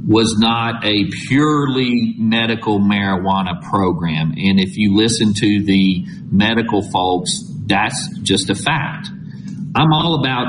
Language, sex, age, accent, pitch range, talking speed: English, male, 40-59, American, 105-135 Hz, 125 wpm